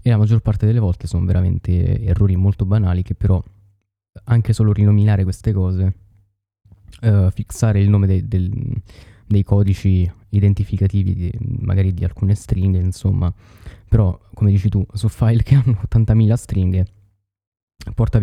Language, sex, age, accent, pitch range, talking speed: Italian, male, 20-39, native, 95-105 Hz, 145 wpm